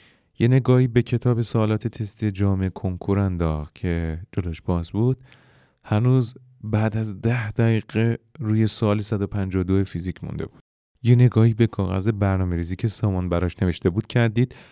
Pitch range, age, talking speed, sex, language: 95-120 Hz, 30-49, 145 wpm, male, Persian